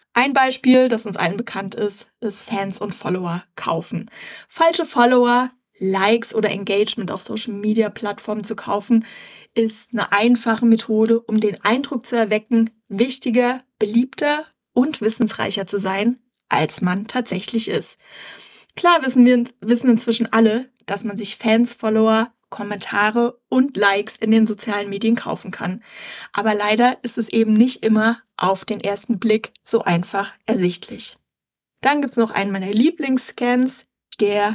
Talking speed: 140 wpm